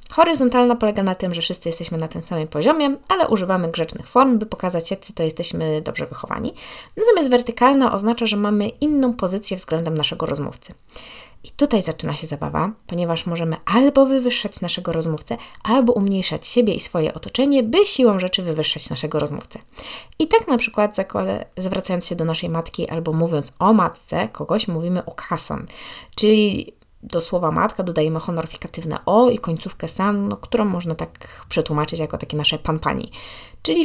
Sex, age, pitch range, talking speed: female, 20-39, 160-210 Hz, 165 wpm